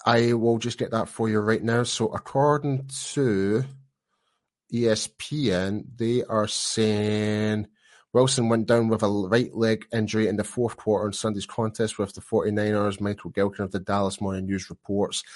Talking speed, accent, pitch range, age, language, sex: 165 wpm, British, 100-110 Hz, 30-49, English, male